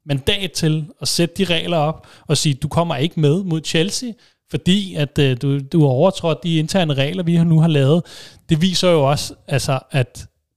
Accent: native